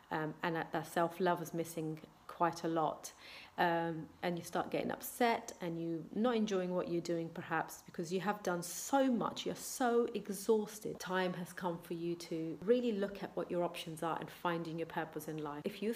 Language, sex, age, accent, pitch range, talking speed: English, female, 30-49, British, 160-200 Hz, 200 wpm